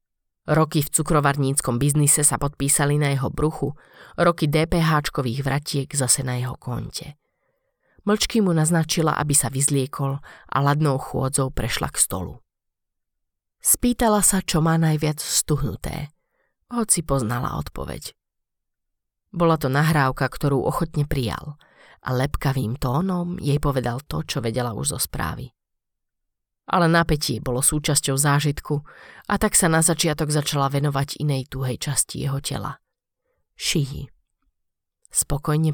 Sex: female